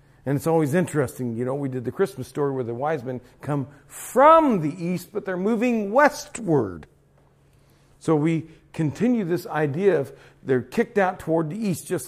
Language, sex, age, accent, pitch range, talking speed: English, male, 50-69, American, 135-175 Hz, 180 wpm